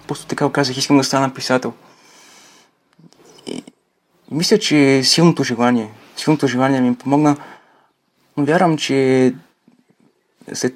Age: 20-39